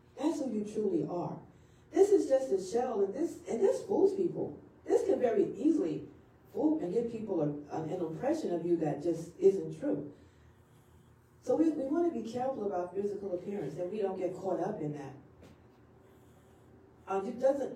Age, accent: 40-59, American